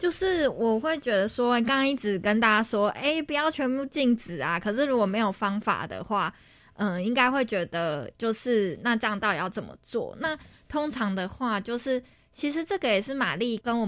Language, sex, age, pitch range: Chinese, female, 20-39, 195-245 Hz